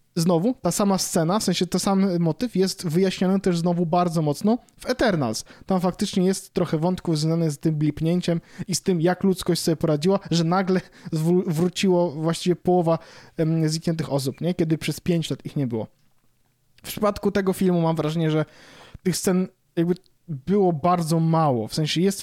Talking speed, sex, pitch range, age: 175 wpm, male, 150-180 Hz, 20-39